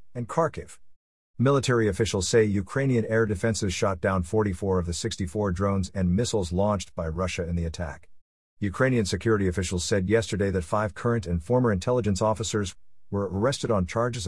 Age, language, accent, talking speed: 50-69, English, American, 165 wpm